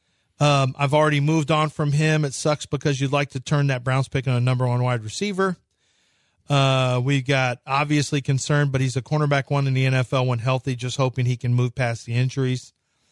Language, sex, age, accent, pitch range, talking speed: English, male, 40-59, American, 130-160 Hz, 210 wpm